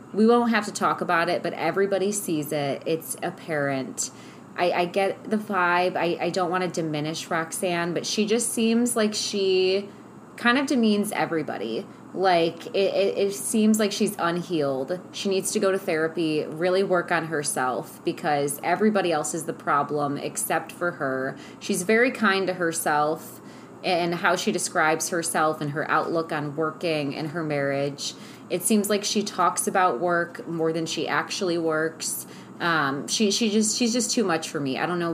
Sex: female